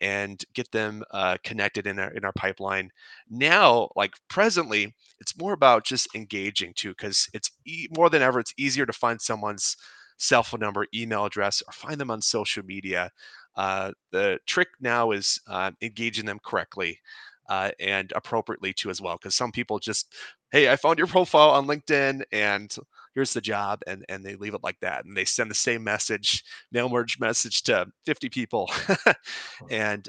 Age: 30-49